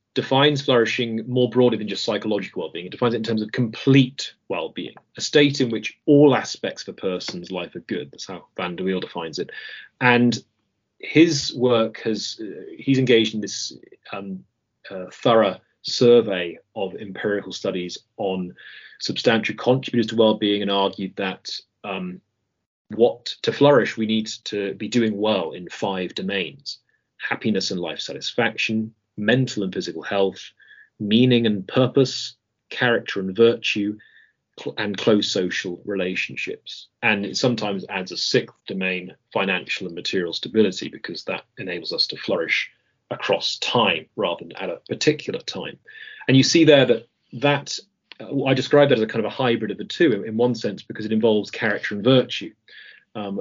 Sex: male